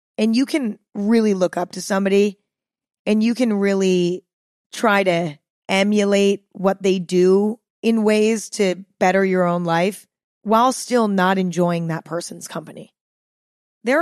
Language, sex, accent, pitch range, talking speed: English, female, American, 175-220 Hz, 140 wpm